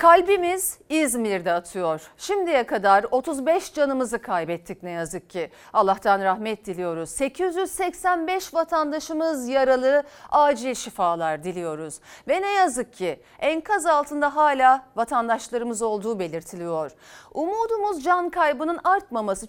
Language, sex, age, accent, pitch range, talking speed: Turkish, female, 40-59, native, 215-310 Hz, 105 wpm